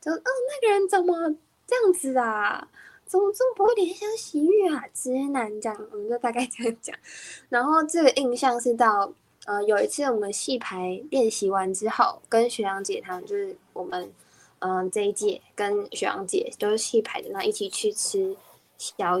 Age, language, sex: 10-29, Chinese, female